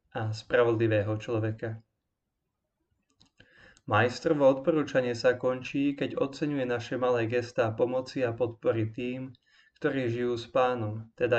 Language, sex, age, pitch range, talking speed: Slovak, male, 20-39, 115-130 Hz, 115 wpm